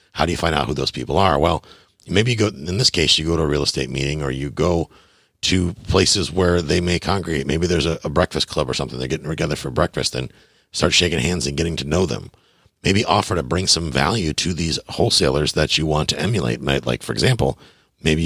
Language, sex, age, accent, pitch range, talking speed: English, male, 50-69, American, 70-90 Hz, 235 wpm